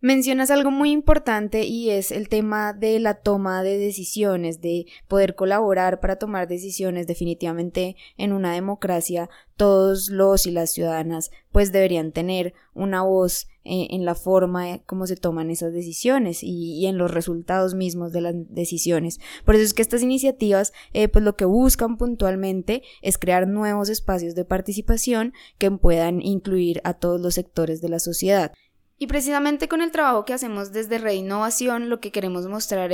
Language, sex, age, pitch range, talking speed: Spanish, female, 20-39, 180-215 Hz, 170 wpm